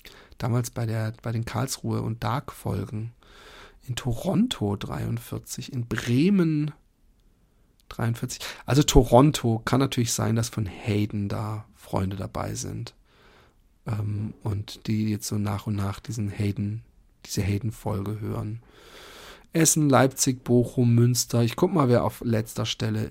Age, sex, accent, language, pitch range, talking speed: 40-59, male, German, German, 110-140 Hz, 130 wpm